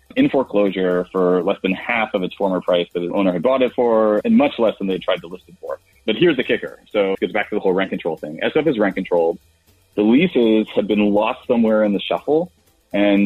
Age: 30-49